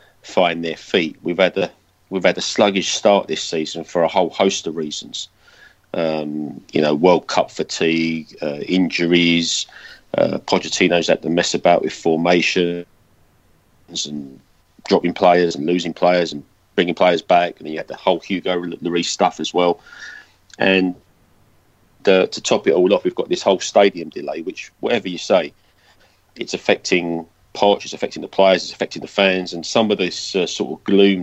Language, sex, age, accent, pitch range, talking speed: English, male, 40-59, British, 80-90 Hz, 175 wpm